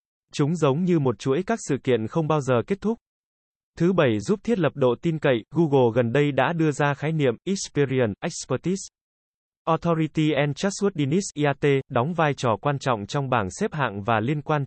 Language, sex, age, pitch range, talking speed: Vietnamese, male, 20-39, 125-165 Hz, 190 wpm